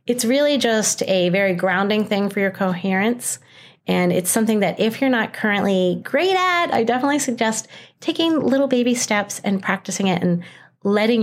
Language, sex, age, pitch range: English, female, 30-49, 180-245 Hz